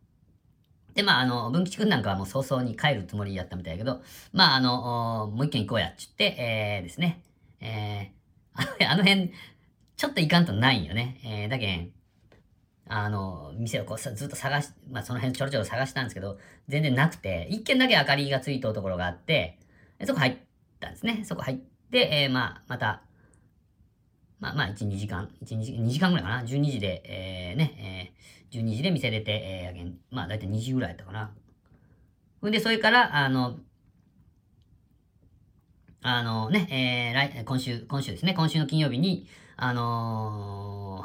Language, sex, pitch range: Japanese, female, 100-140 Hz